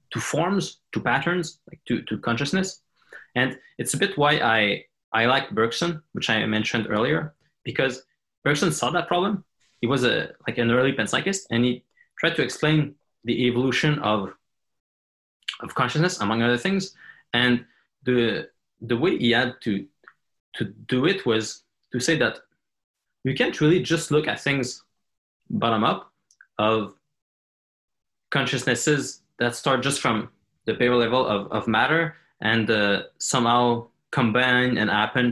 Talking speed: 150 wpm